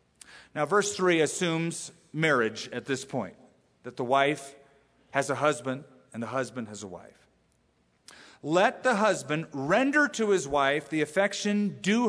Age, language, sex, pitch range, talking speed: 40-59, English, male, 125-165 Hz, 150 wpm